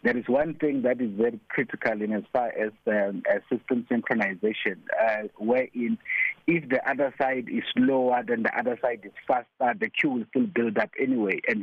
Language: English